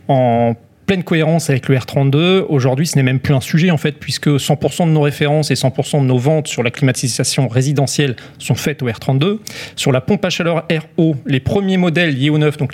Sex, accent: male, French